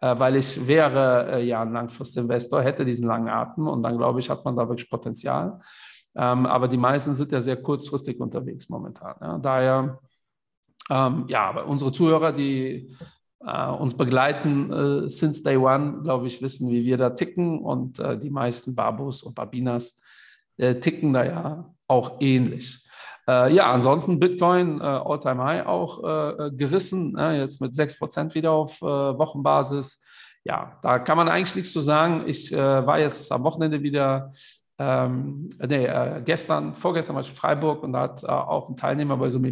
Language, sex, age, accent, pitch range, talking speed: German, male, 50-69, German, 125-155 Hz, 175 wpm